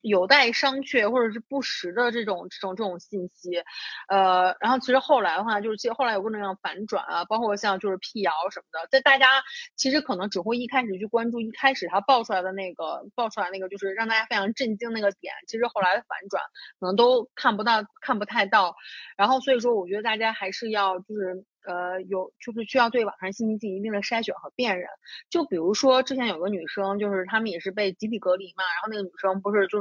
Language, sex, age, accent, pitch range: Chinese, female, 30-49, native, 190-235 Hz